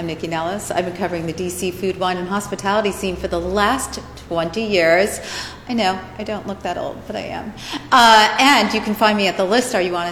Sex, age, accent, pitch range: female, 40-59, American, 170-220 Hz